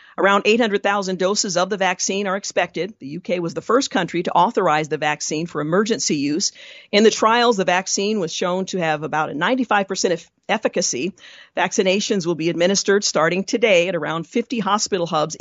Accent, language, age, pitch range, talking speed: American, English, 50-69, 165-200 Hz, 180 wpm